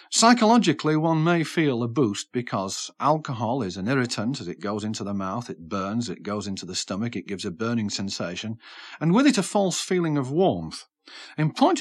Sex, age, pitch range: male, 40-59, 110-155 Hz